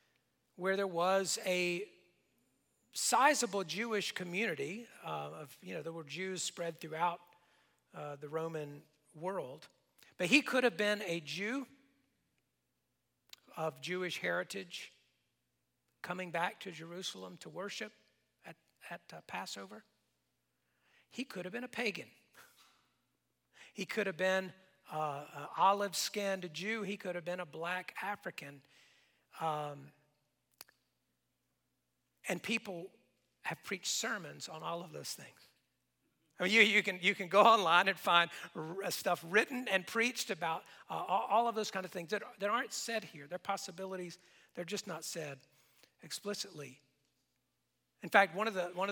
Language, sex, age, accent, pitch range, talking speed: English, male, 50-69, American, 155-200 Hz, 140 wpm